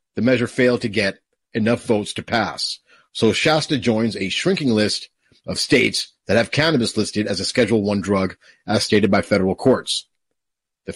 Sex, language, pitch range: male, English, 105-135 Hz